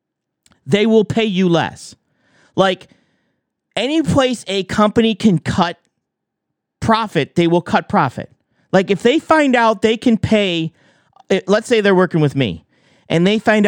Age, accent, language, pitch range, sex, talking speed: 40-59, American, English, 155-205 Hz, male, 150 wpm